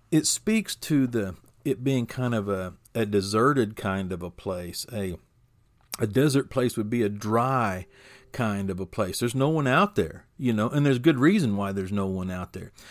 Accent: American